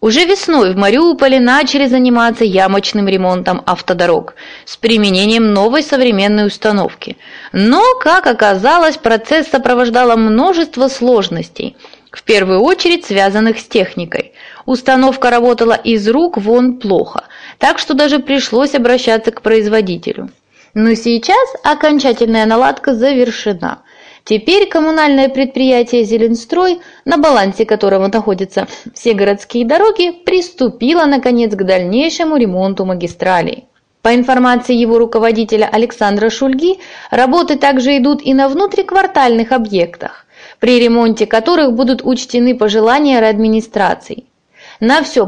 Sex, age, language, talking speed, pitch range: female, 20-39, Russian, 110 wpm, 215-280 Hz